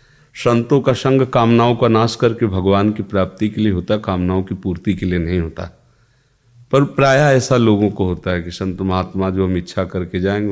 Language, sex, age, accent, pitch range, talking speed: Hindi, male, 40-59, native, 95-125 Hz, 200 wpm